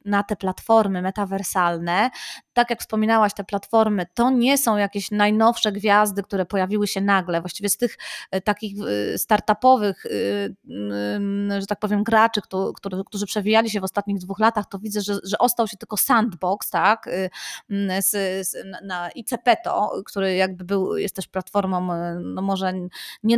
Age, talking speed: 20-39, 160 wpm